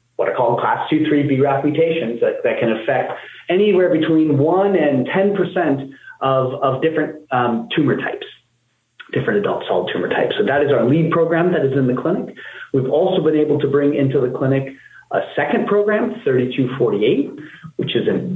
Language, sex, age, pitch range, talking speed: English, male, 40-59, 135-180 Hz, 175 wpm